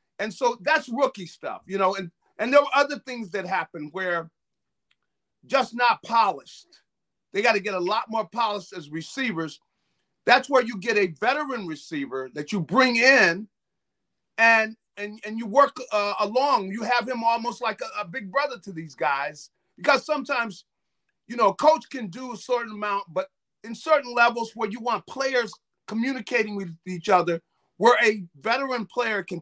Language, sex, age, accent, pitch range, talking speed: English, male, 40-59, American, 185-250 Hz, 175 wpm